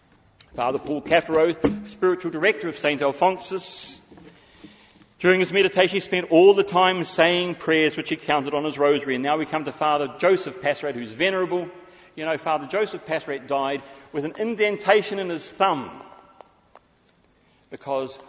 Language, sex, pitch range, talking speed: English, male, 135-165 Hz, 155 wpm